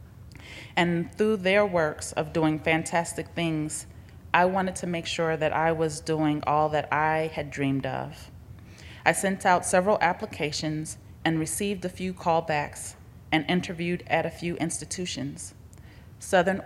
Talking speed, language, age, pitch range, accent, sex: 145 wpm, English, 30-49, 125-175 Hz, American, female